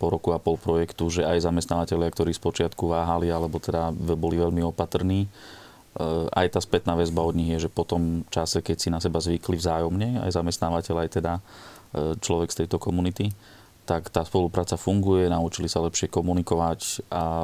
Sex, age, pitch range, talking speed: male, 30-49, 85-90 Hz, 170 wpm